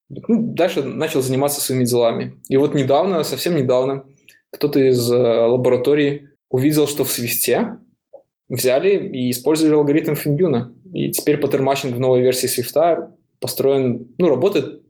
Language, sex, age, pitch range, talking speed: Russian, male, 20-39, 125-145 Hz, 135 wpm